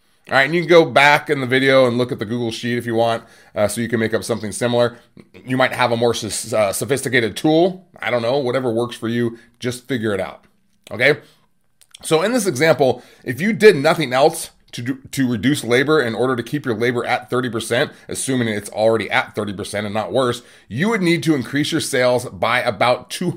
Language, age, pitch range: English, 30-49, 115-140 Hz